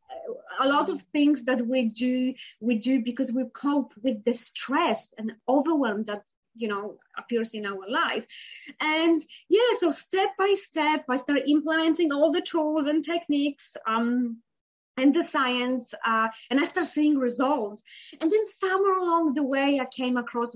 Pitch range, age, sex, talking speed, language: 235-305 Hz, 20-39, female, 165 wpm, English